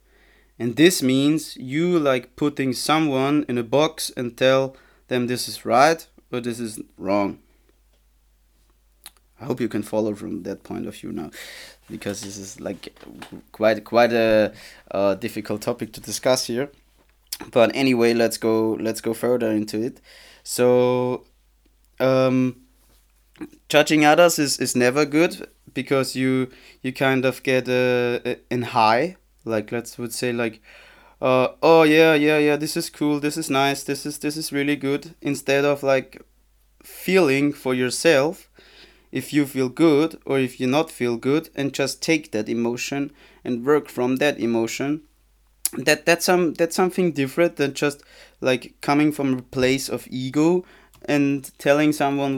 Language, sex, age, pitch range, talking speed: English, male, 20-39, 120-145 Hz, 155 wpm